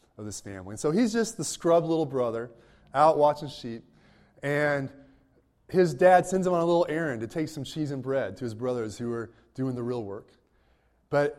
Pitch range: 110-150 Hz